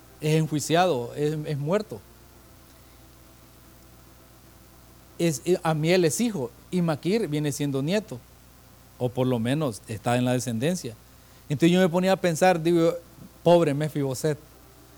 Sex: male